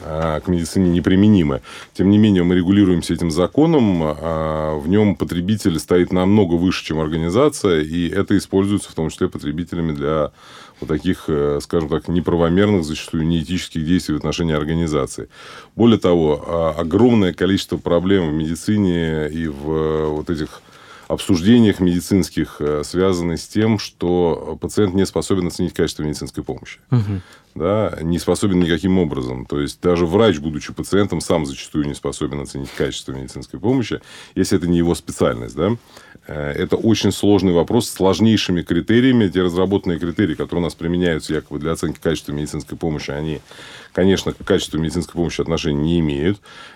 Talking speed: 150 wpm